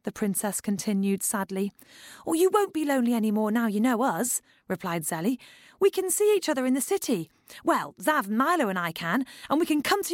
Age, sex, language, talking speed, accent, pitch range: 30-49, female, English, 215 wpm, British, 200-325 Hz